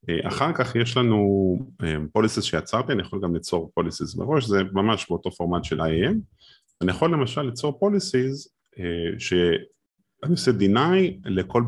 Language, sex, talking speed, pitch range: Hebrew, male, 140 wpm, 95-150 Hz